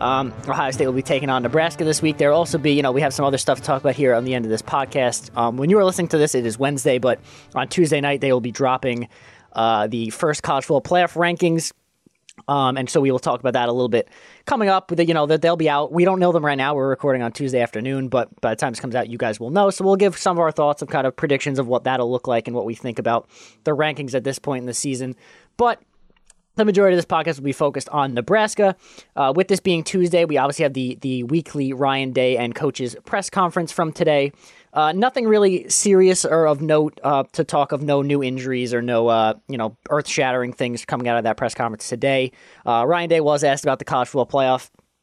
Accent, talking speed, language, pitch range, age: American, 260 wpm, English, 125-165 Hz, 20-39